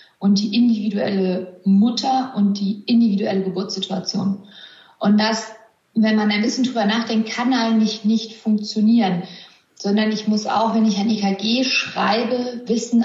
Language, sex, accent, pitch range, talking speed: German, female, German, 200-230 Hz, 140 wpm